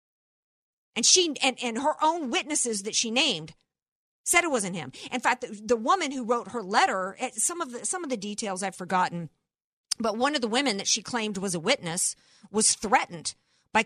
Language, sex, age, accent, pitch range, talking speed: English, female, 50-69, American, 200-265 Hz, 200 wpm